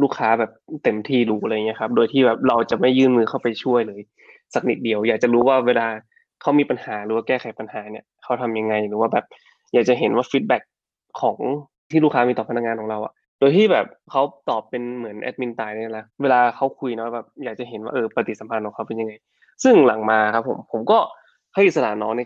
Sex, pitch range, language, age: male, 110-130 Hz, Thai, 20-39